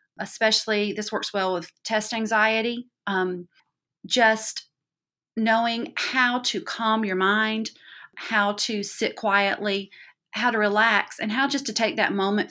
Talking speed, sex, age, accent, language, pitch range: 140 wpm, female, 40-59, American, English, 190-230 Hz